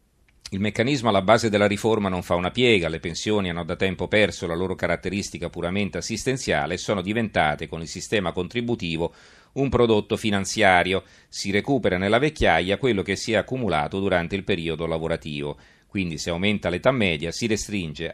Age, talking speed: 40-59, 170 wpm